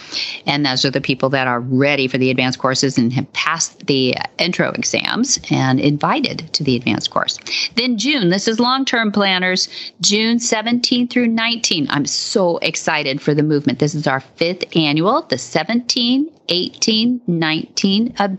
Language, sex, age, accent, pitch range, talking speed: English, female, 40-59, American, 150-215 Hz, 165 wpm